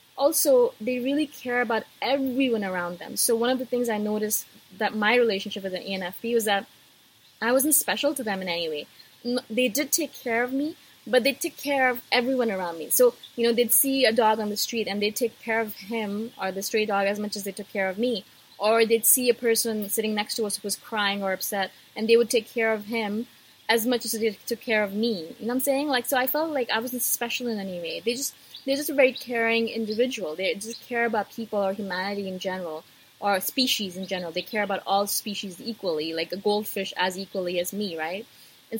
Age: 20-39